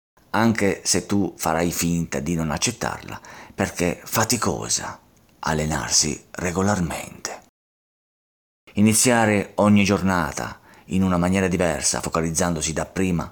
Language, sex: Italian, male